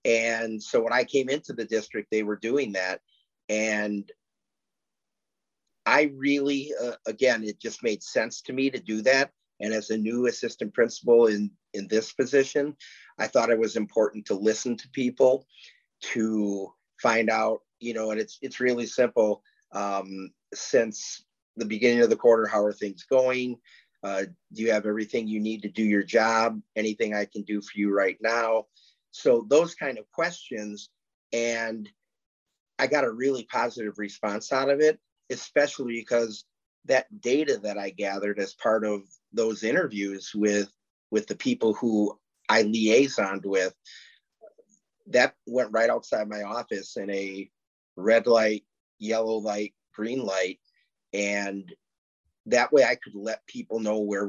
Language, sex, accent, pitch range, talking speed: English, male, American, 105-120 Hz, 160 wpm